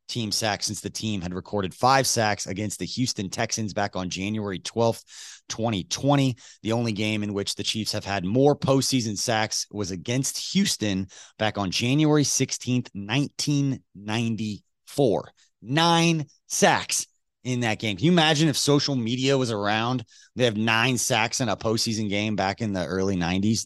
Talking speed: 160 wpm